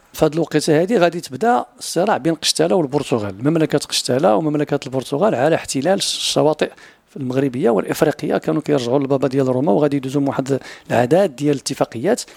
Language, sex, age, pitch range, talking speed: French, male, 50-69, 130-155 Hz, 140 wpm